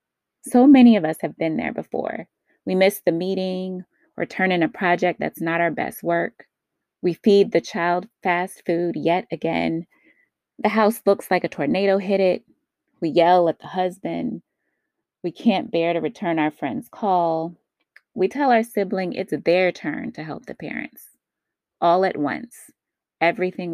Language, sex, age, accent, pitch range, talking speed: English, female, 20-39, American, 165-225 Hz, 165 wpm